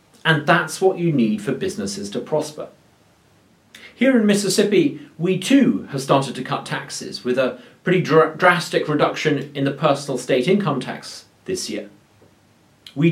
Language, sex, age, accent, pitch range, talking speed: English, male, 40-59, British, 140-190 Hz, 150 wpm